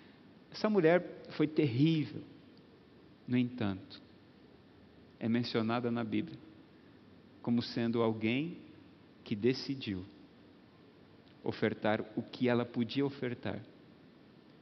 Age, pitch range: 50-69, 115-155 Hz